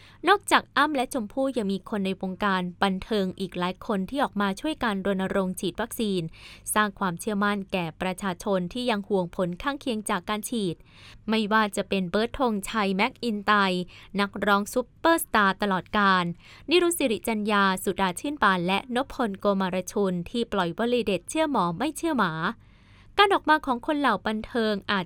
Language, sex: Thai, female